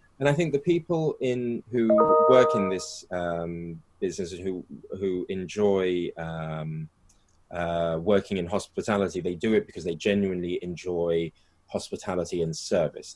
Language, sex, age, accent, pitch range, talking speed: English, male, 20-39, British, 85-115 Hz, 135 wpm